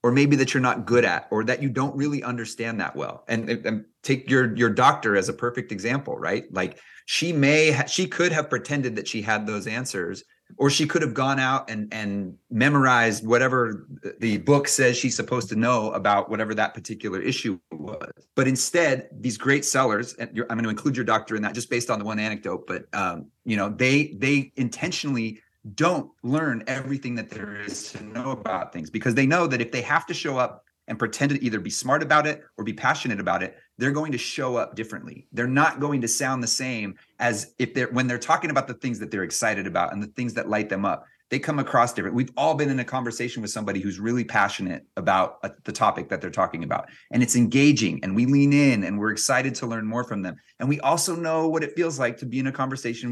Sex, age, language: male, 30-49, English